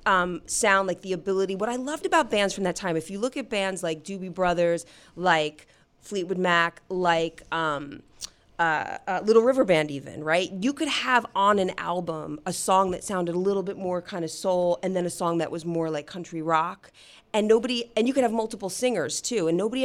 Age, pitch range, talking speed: 30-49, 160-195 Hz, 215 wpm